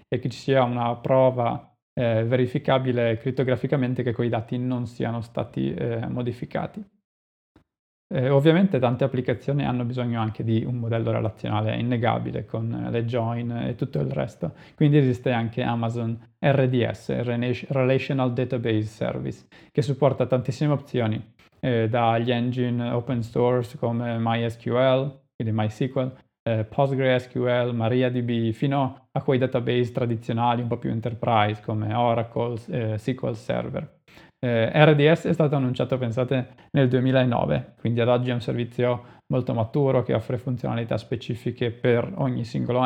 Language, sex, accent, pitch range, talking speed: Italian, male, native, 115-130 Hz, 135 wpm